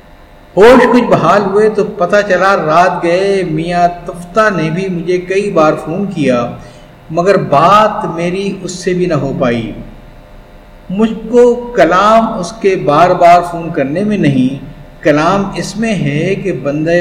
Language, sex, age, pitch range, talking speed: Urdu, male, 50-69, 155-205 Hz, 155 wpm